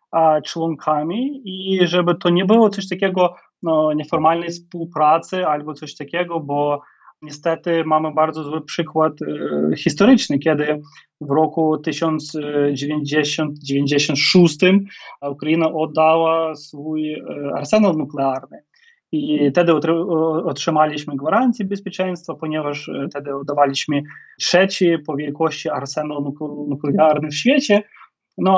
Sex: male